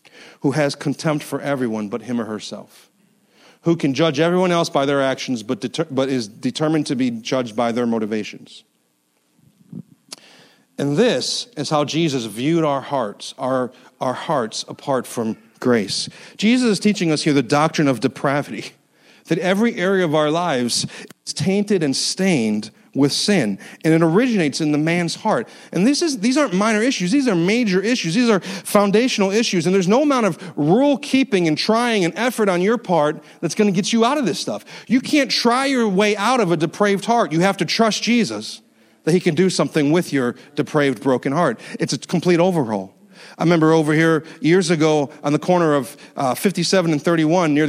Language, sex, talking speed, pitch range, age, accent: English, male, 190 wpm, 145-200 Hz, 40-59, American